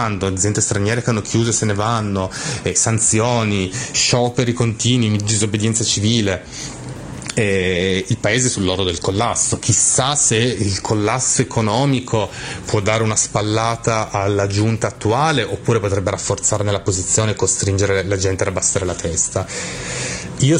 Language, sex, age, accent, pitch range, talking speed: Italian, male, 30-49, native, 100-120 Hz, 140 wpm